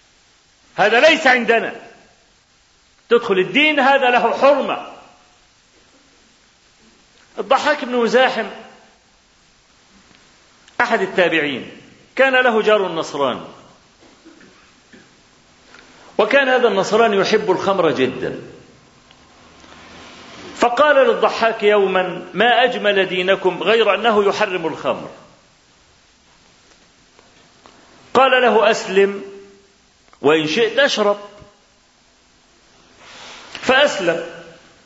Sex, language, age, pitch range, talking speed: male, Arabic, 50-69, 195-245 Hz, 70 wpm